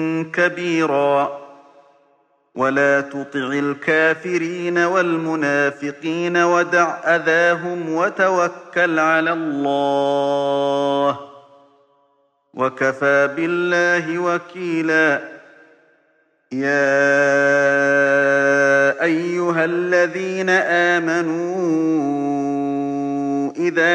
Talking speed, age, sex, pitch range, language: 45 wpm, 40-59, male, 140-175 Hz, Arabic